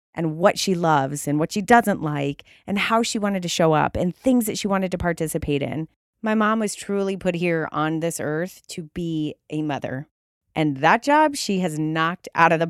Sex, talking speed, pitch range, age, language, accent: female, 215 wpm, 155-195 Hz, 30-49, English, American